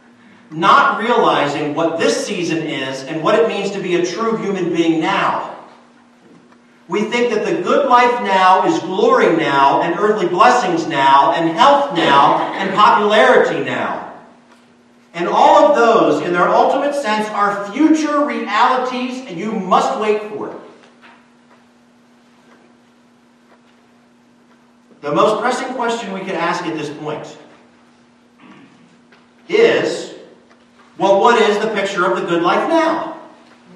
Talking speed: 135 wpm